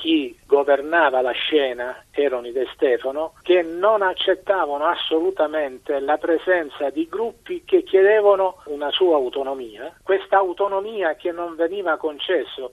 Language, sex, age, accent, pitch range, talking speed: Italian, male, 50-69, native, 140-210 Hz, 125 wpm